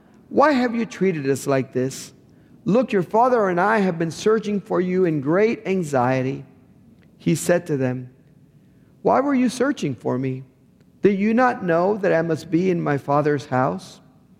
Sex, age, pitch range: male, 50-69, 130-175 Hz